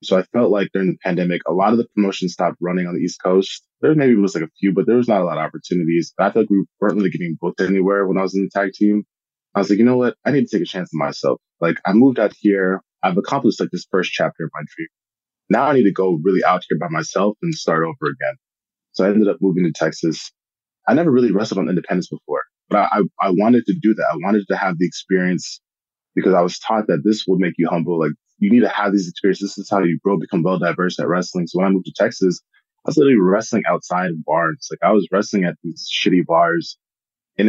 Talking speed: 265 wpm